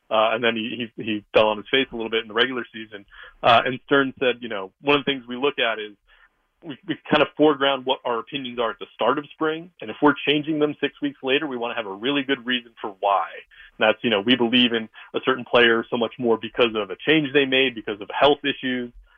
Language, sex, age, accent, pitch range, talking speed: English, male, 30-49, American, 115-130 Hz, 265 wpm